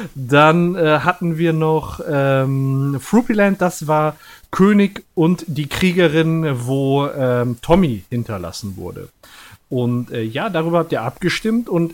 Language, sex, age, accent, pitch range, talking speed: German, male, 40-59, German, 125-175 Hz, 130 wpm